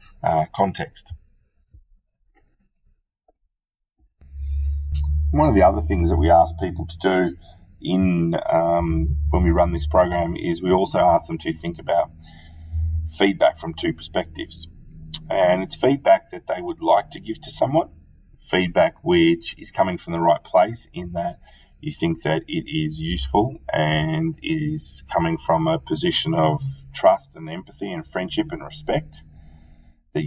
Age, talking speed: 30-49, 145 wpm